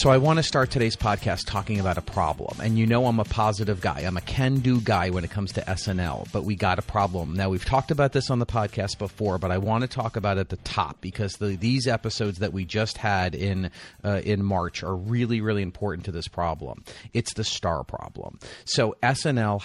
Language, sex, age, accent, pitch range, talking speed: English, male, 30-49, American, 95-120 Hz, 230 wpm